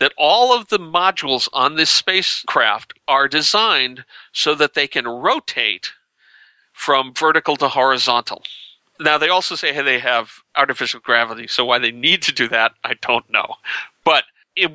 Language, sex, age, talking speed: English, male, 40-59, 165 wpm